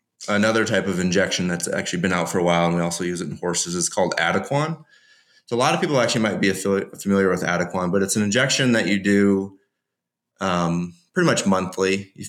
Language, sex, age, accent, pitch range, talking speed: English, male, 30-49, American, 90-105 Hz, 215 wpm